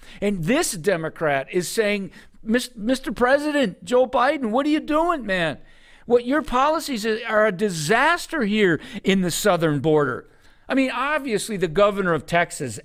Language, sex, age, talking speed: English, male, 50-69, 150 wpm